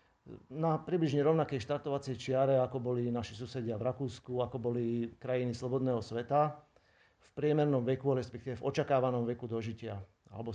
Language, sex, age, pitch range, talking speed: Slovak, male, 40-59, 120-140 Hz, 140 wpm